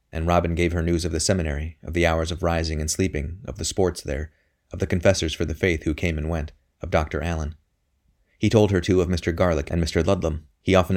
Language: English